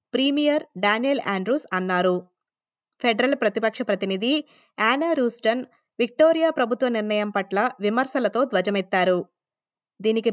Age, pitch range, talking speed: 20-39, 200-265 Hz, 95 wpm